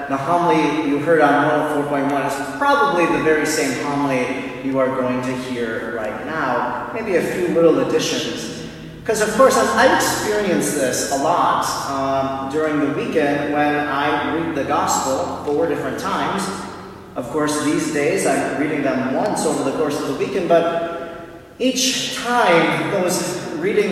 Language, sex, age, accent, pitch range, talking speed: English, male, 30-49, American, 145-175 Hz, 160 wpm